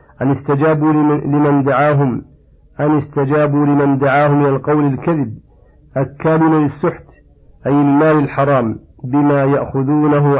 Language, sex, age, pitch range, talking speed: Arabic, male, 50-69, 135-145 Hz, 105 wpm